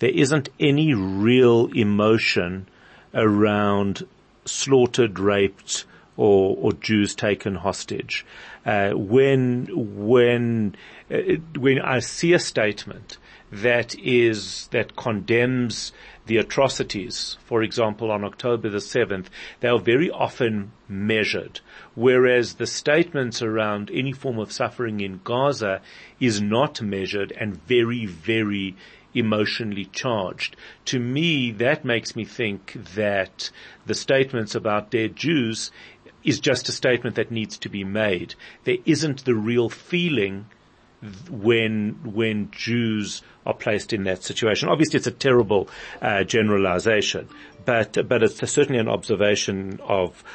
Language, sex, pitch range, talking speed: English, male, 105-125 Hz, 125 wpm